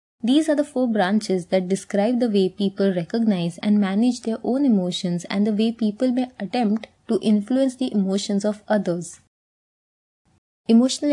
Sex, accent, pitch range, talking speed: female, Indian, 185-230 Hz, 155 wpm